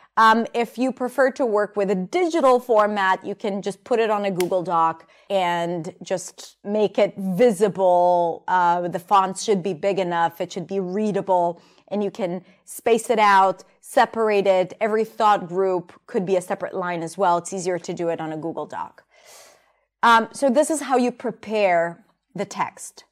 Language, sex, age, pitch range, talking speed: English, female, 30-49, 185-240 Hz, 185 wpm